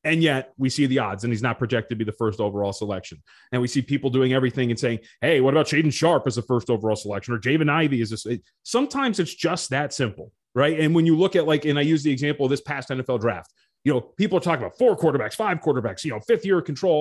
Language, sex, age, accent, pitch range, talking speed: English, male, 30-49, American, 125-160 Hz, 270 wpm